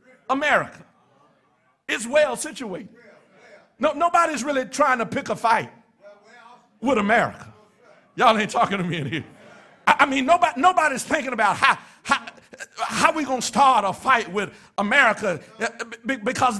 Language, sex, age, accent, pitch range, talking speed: English, male, 50-69, American, 205-270 Hz, 140 wpm